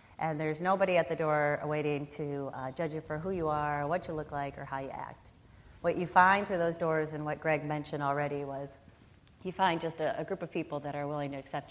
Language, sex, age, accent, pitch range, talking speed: English, female, 30-49, American, 145-165 Hz, 245 wpm